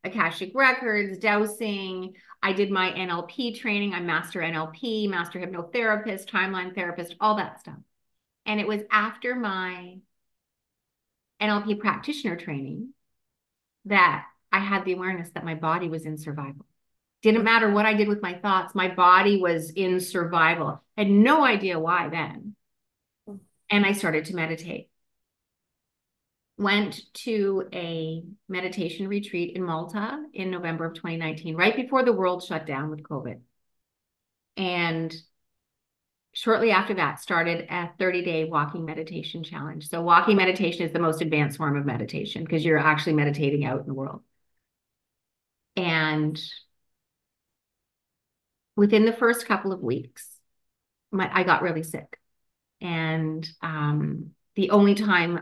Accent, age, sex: American, 30-49, female